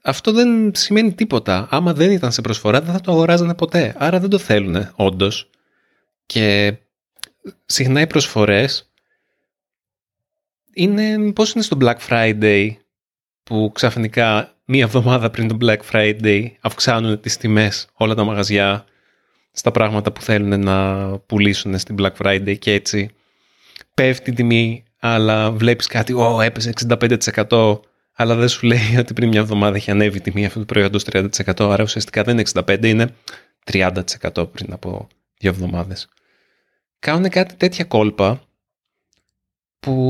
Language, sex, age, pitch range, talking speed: Greek, male, 30-49, 100-135 Hz, 140 wpm